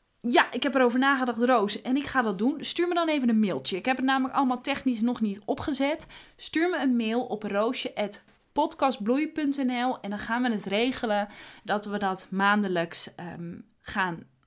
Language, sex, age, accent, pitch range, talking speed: Dutch, female, 20-39, Dutch, 210-290 Hz, 180 wpm